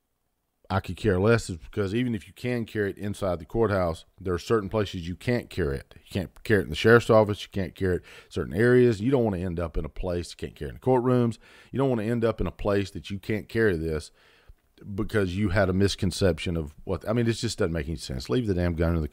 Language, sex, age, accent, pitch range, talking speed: English, male, 40-59, American, 85-110 Hz, 275 wpm